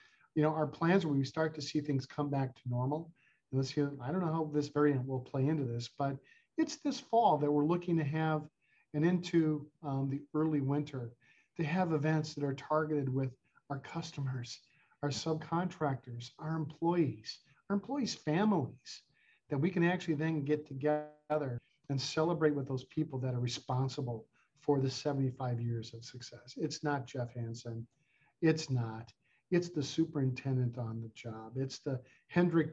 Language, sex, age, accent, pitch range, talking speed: English, male, 50-69, American, 130-155 Hz, 165 wpm